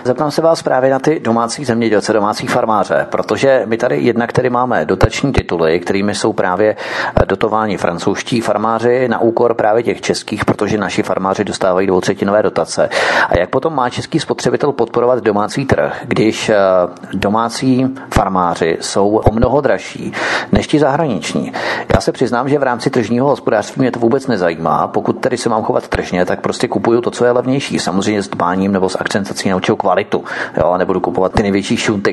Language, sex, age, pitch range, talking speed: Czech, male, 40-59, 95-125 Hz, 175 wpm